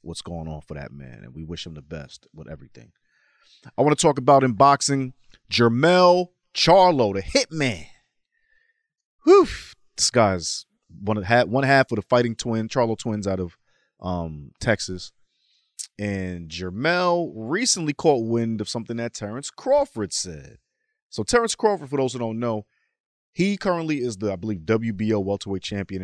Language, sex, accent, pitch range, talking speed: English, male, American, 95-140 Hz, 160 wpm